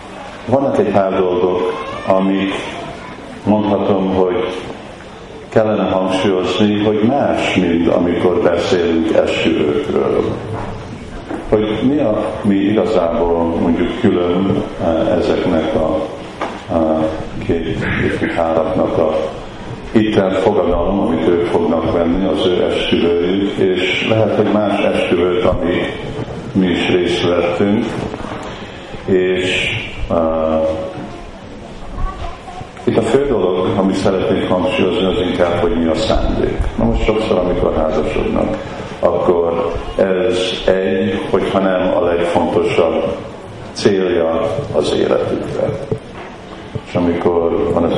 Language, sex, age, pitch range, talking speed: Hungarian, male, 50-69, 85-100 Hz, 100 wpm